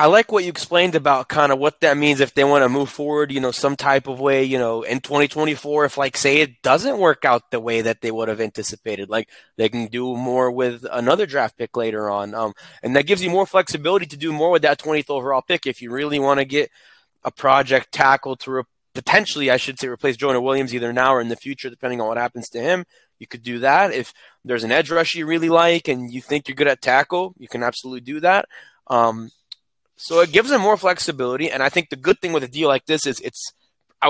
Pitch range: 125-155 Hz